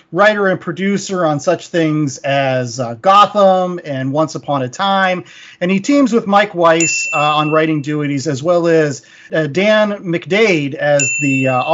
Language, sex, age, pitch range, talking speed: English, male, 40-59, 165-210 Hz, 170 wpm